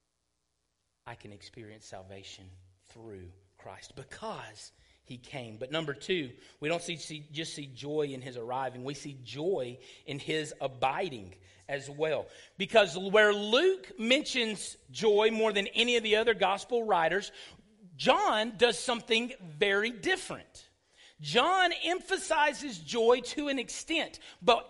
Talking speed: 135 wpm